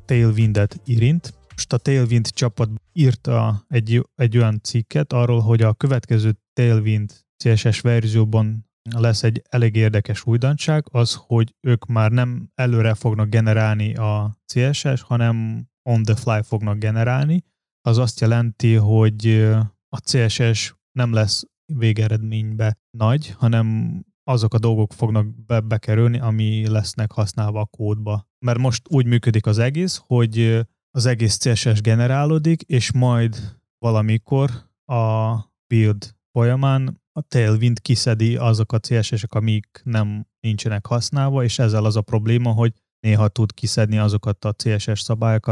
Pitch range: 110-120 Hz